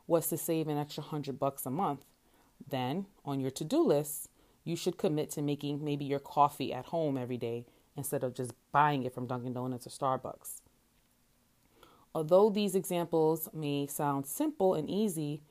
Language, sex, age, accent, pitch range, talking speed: English, female, 30-49, American, 140-175 Hz, 170 wpm